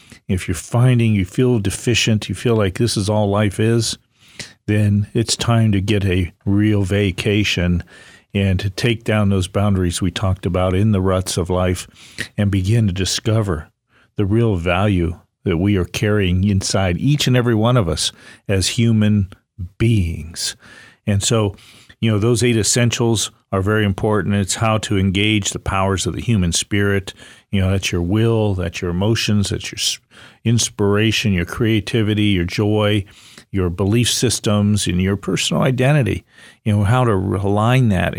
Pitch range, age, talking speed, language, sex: 95-115 Hz, 50-69, 165 wpm, English, male